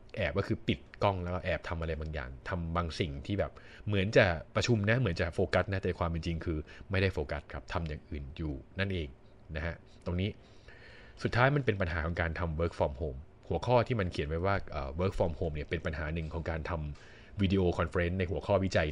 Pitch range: 85-105 Hz